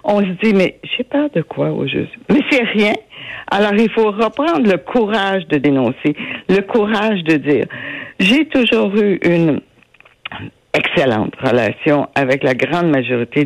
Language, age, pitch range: French, 60-79, 150-205 Hz